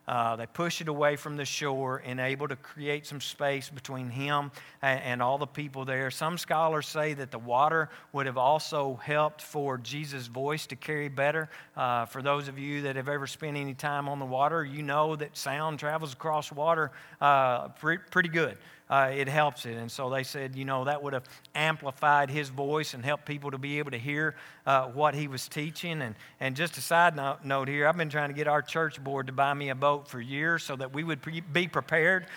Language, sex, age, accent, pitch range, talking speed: English, male, 50-69, American, 135-165 Hz, 225 wpm